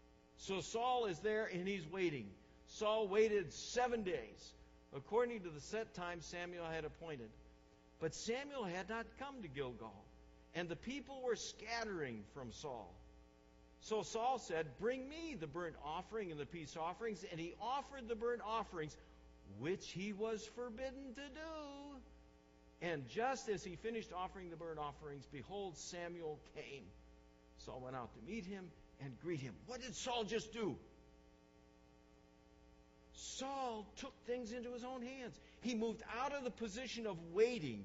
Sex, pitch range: male, 140-235 Hz